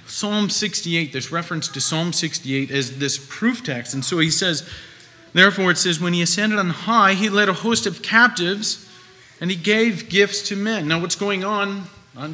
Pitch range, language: 125-185 Hz, English